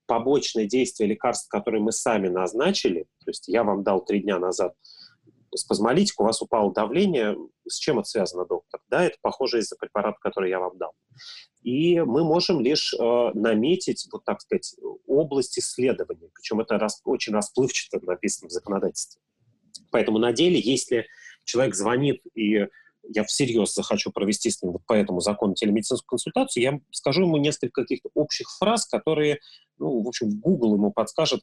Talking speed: 160 wpm